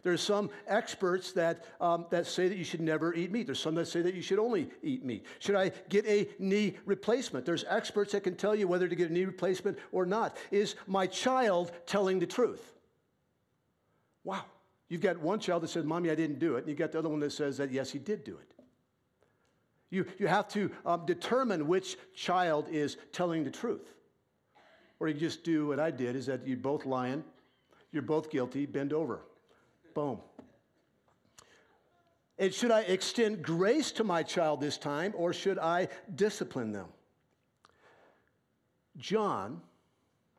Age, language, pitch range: 60-79, English, 150-195 Hz